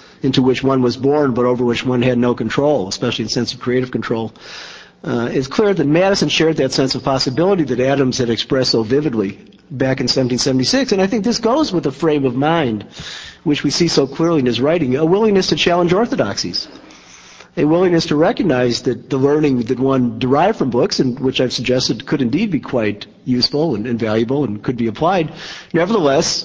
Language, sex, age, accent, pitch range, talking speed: English, male, 50-69, American, 120-155 Hz, 200 wpm